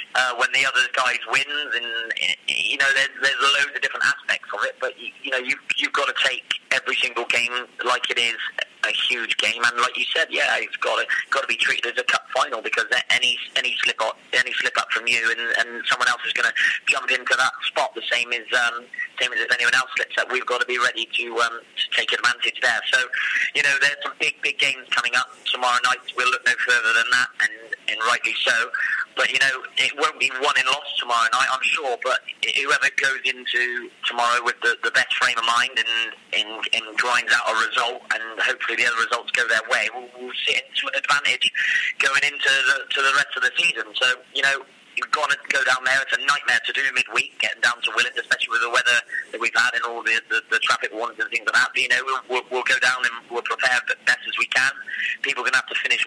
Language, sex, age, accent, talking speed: English, male, 30-49, British, 245 wpm